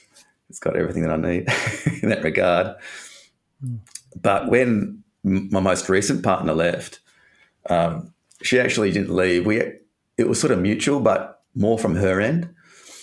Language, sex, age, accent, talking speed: English, male, 30-49, Australian, 145 wpm